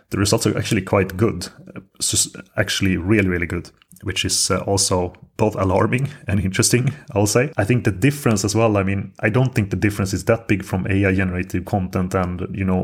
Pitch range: 95-105 Hz